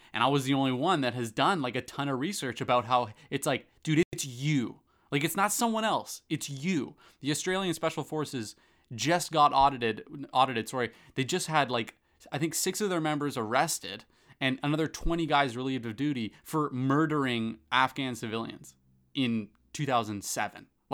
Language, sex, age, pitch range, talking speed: English, male, 20-39, 115-150 Hz, 175 wpm